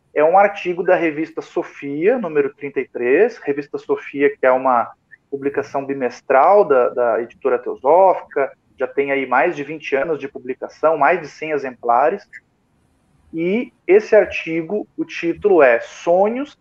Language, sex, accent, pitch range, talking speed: Portuguese, male, Brazilian, 160-250 Hz, 140 wpm